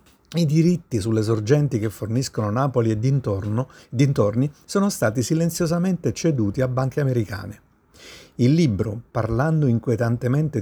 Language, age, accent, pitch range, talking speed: Italian, 50-69, native, 110-145 Hz, 120 wpm